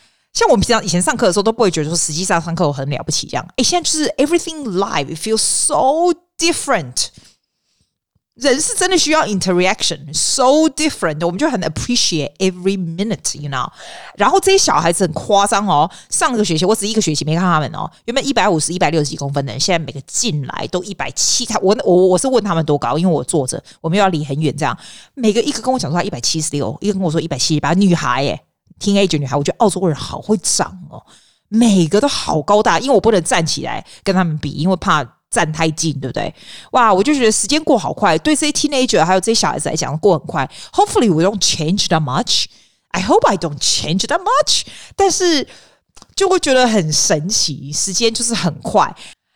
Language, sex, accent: Chinese, female, native